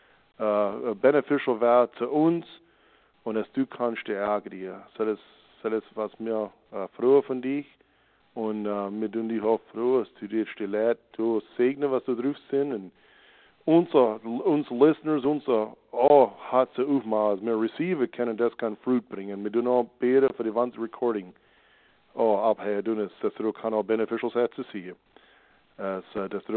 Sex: male